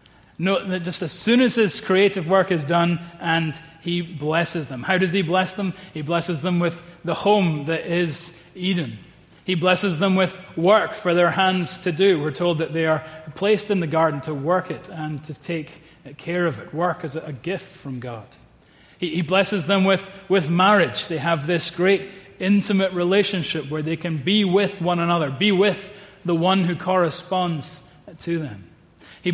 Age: 30-49